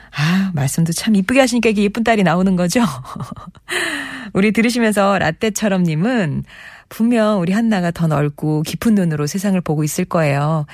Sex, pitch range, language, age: female, 150-210 Hz, Korean, 40-59